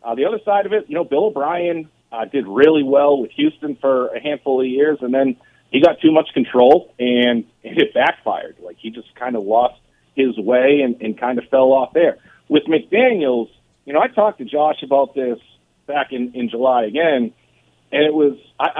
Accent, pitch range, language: American, 125-155 Hz, English